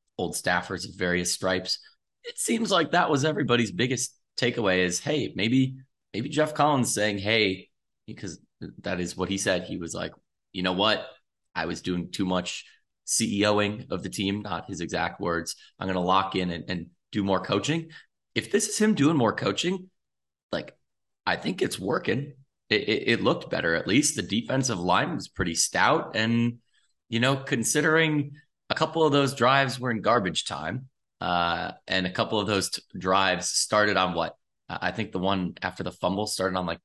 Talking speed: 185 wpm